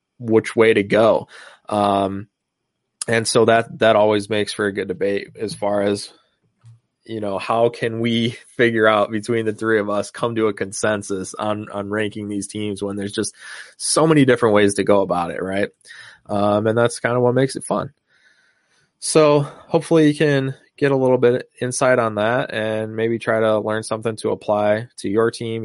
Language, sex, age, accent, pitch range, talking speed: English, male, 20-39, American, 105-120 Hz, 190 wpm